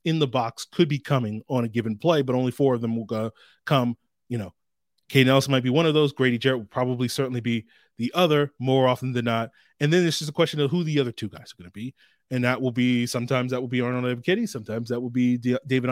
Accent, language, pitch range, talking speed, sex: American, English, 120-140 Hz, 270 wpm, male